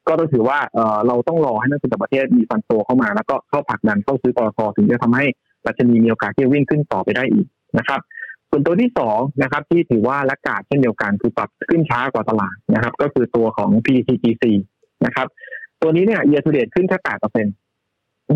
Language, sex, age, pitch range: Thai, male, 20-39, 115-160 Hz